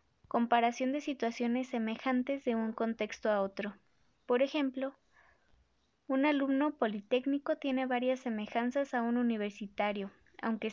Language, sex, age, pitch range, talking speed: Spanish, female, 20-39, 225-270 Hz, 115 wpm